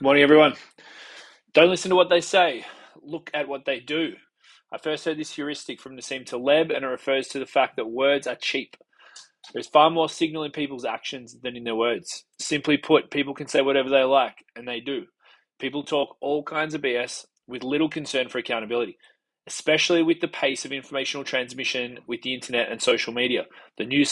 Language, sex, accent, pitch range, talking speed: English, male, Australian, 130-155 Hz, 195 wpm